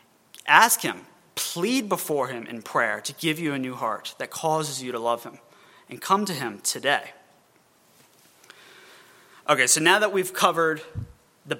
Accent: American